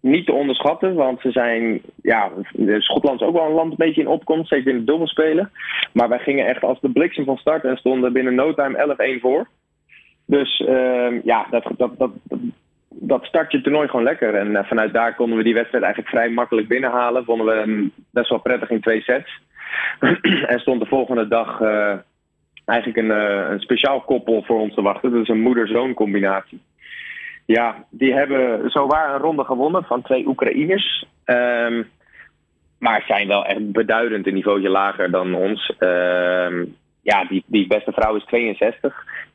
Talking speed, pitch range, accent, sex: 185 wpm, 105-130 Hz, Dutch, male